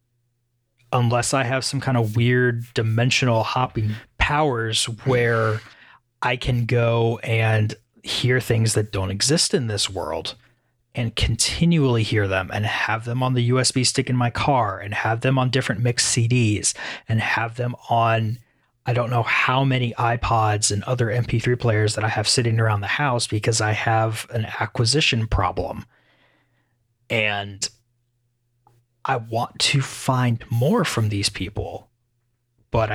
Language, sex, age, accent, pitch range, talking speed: English, male, 30-49, American, 110-125 Hz, 150 wpm